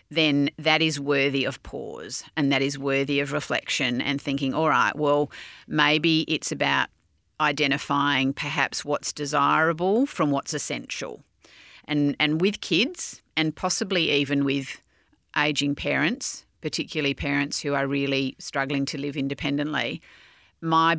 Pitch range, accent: 140-150 Hz, Australian